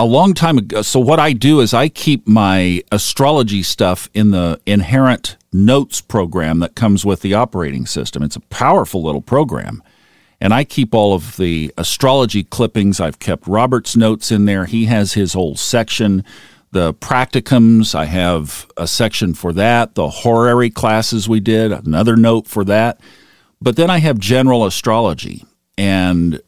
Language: English